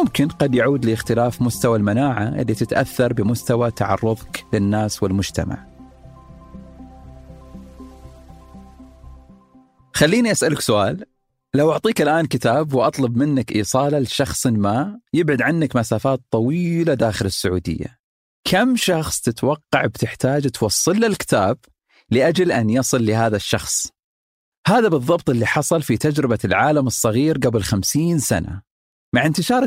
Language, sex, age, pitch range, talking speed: Arabic, male, 40-59, 110-150 Hz, 110 wpm